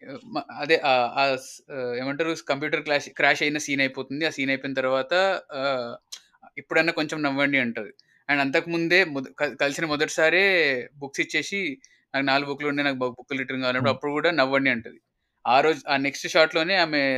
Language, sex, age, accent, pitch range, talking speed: Telugu, male, 20-39, native, 135-180 Hz, 145 wpm